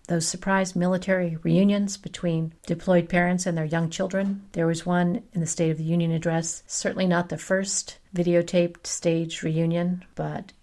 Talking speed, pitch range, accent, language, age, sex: 165 wpm, 165-195 Hz, American, English, 50-69, female